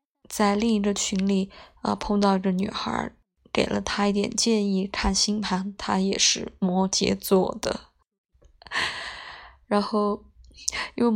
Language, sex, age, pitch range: Chinese, female, 20-39, 195-215 Hz